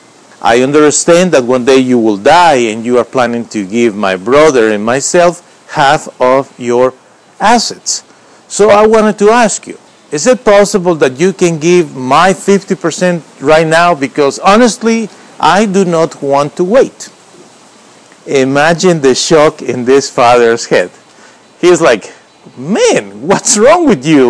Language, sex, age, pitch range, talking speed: English, male, 50-69, 125-185 Hz, 150 wpm